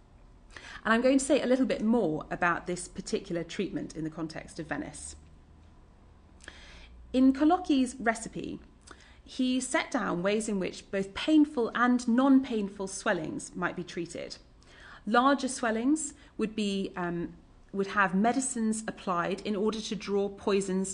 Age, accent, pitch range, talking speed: 30-49, British, 180-235 Hz, 140 wpm